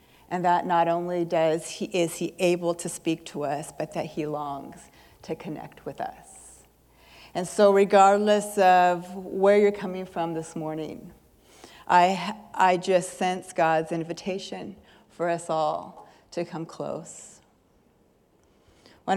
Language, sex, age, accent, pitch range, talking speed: English, female, 40-59, American, 160-200 Hz, 140 wpm